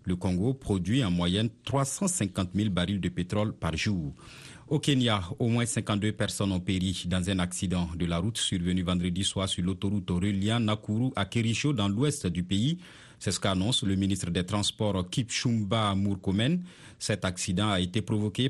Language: French